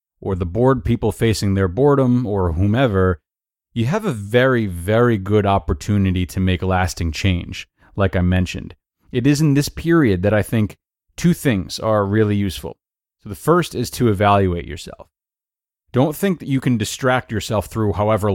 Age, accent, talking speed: 30-49, American, 170 wpm